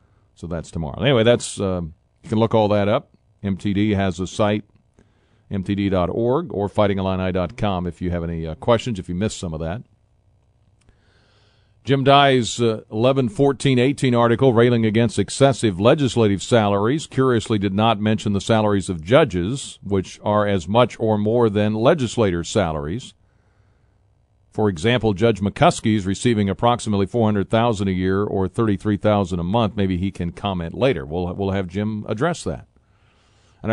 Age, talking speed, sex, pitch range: 50-69, 155 wpm, male, 95-110 Hz